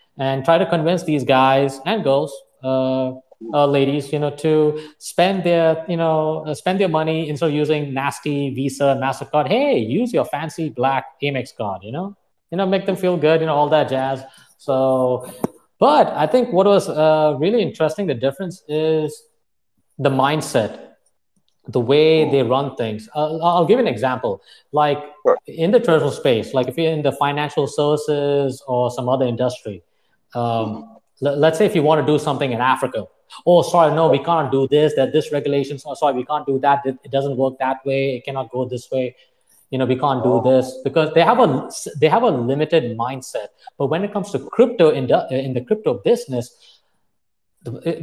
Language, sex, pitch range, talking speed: English, male, 135-165 Hz, 190 wpm